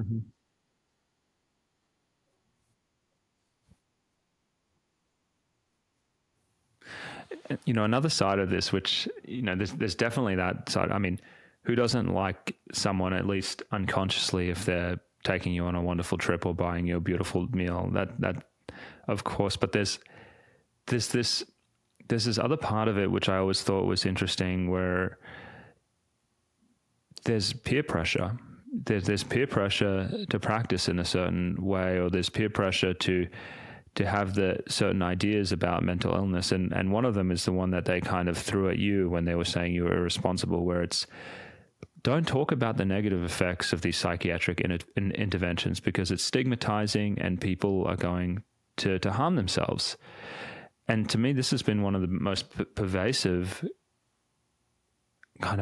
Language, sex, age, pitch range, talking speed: English, male, 30-49, 90-110 Hz, 155 wpm